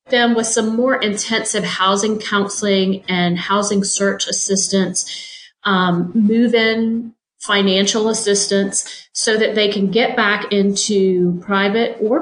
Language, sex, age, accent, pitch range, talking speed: English, female, 40-59, American, 185-225 Hz, 120 wpm